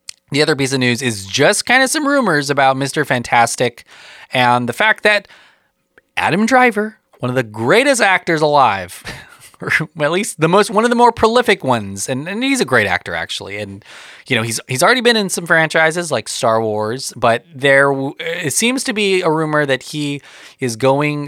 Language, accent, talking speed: English, American, 195 wpm